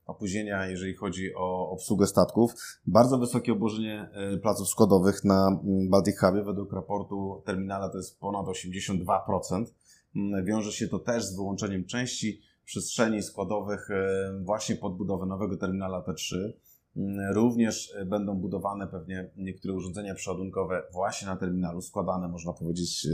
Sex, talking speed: male, 125 wpm